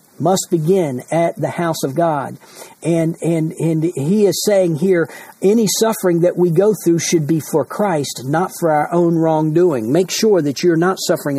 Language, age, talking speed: English, 50-69, 185 wpm